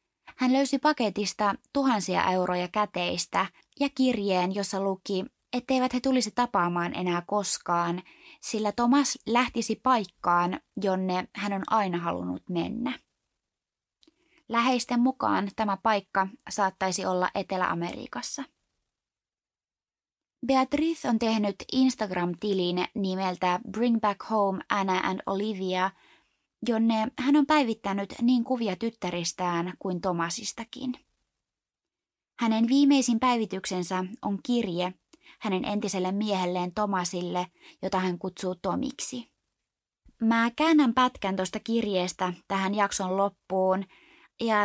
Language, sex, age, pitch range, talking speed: Finnish, female, 20-39, 185-245 Hz, 105 wpm